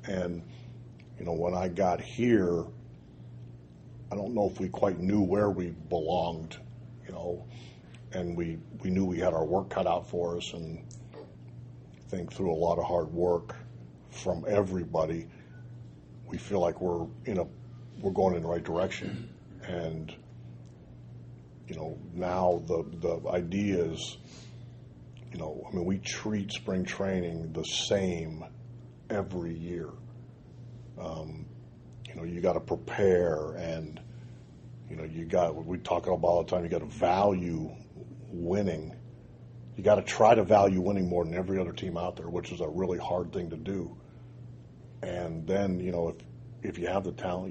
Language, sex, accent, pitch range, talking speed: English, male, American, 85-115 Hz, 165 wpm